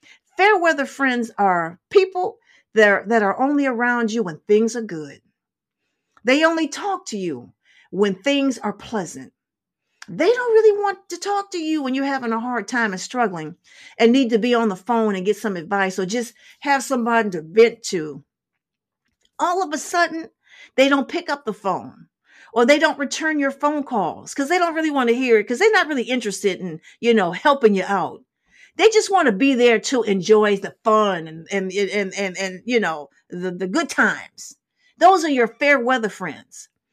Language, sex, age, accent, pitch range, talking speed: English, female, 50-69, American, 205-315 Hz, 195 wpm